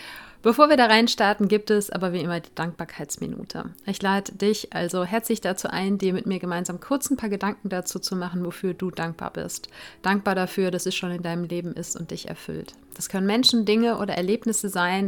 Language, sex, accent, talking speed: German, female, German, 205 wpm